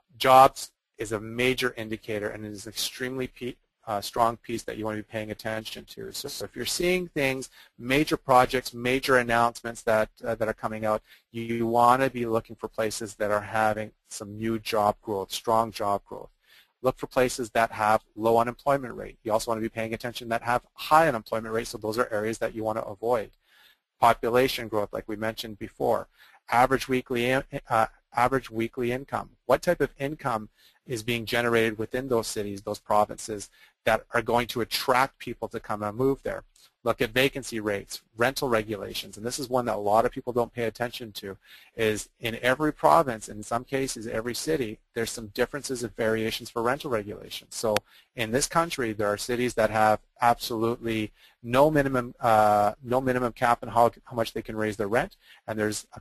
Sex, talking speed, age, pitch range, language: male, 200 wpm, 30-49, 110-125 Hz, English